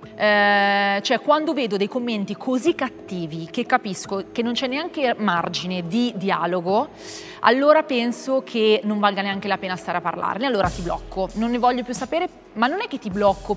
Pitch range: 195-245 Hz